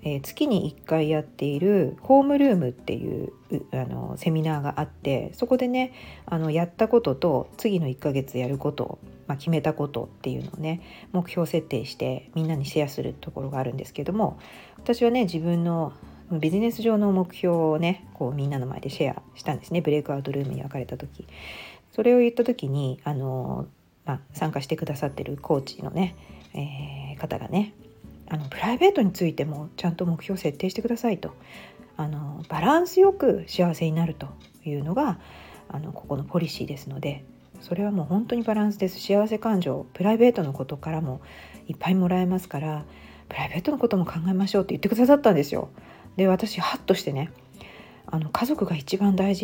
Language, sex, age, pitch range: Japanese, female, 40-59, 140-200 Hz